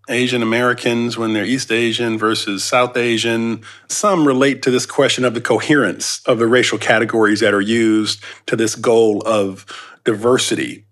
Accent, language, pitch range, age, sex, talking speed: American, English, 110-135 Hz, 40-59, male, 160 wpm